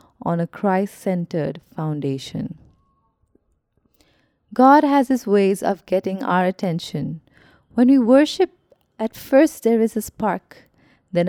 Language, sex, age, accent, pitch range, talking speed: English, female, 30-49, Indian, 170-225 Hz, 115 wpm